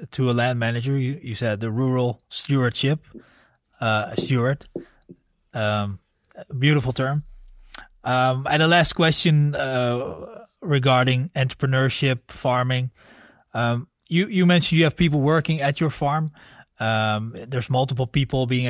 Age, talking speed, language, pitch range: 20-39, 130 wpm, English, 125-150 Hz